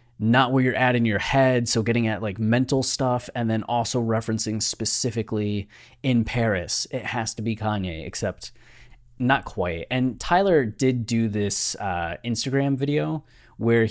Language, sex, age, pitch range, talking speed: English, male, 20-39, 95-120 Hz, 160 wpm